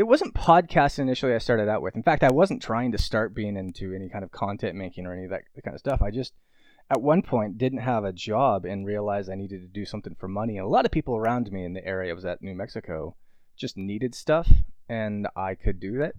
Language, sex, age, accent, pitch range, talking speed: English, male, 20-39, American, 95-120 Hz, 255 wpm